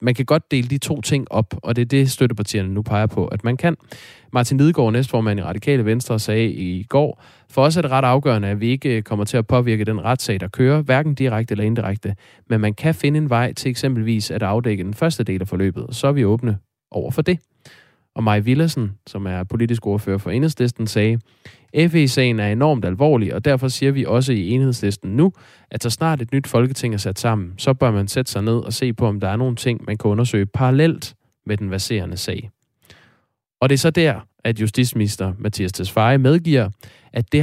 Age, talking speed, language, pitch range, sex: 20-39, 220 wpm, Danish, 105-135 Hz, male